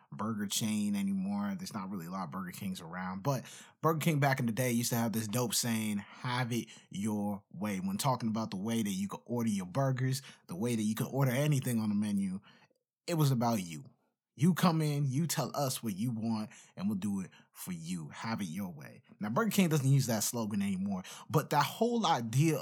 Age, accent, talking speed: 20-39, American, 225 wpm